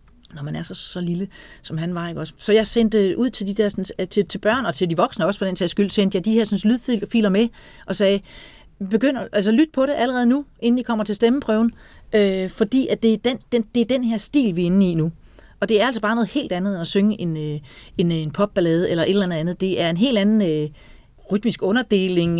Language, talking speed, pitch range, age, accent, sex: Danish, 260 wpm, 170-225 Hz, 40-59, native, female